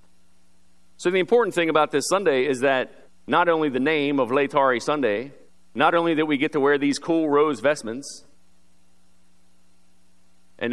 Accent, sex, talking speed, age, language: American, male, 155 wpm, 40-59, English